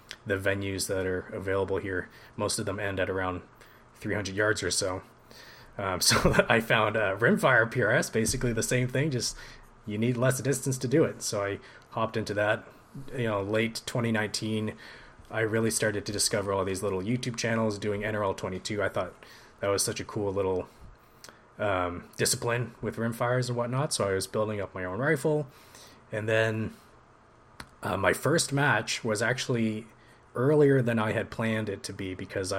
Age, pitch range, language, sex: 20-39, 100-120 Hz, English, male